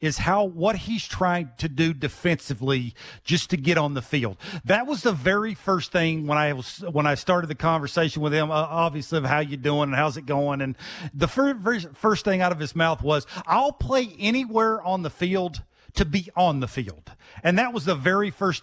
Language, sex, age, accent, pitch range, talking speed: English, male, 50-69, American, 150-190 Hz, 215 wpm